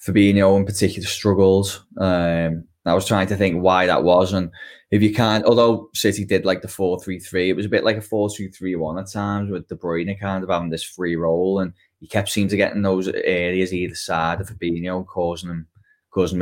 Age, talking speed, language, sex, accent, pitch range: 10-29, 210 wpm, English, male, British, 85-105 Hz